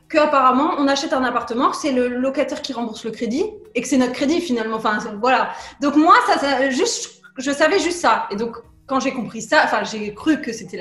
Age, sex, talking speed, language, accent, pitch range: 20-39, female, 220 wpm, French, French, 220-280 Hz